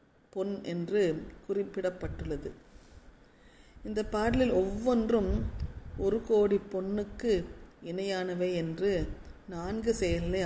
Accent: native